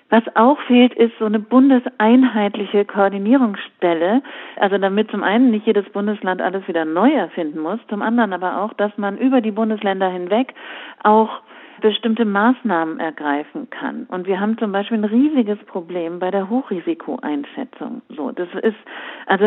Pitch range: 195-245 Hz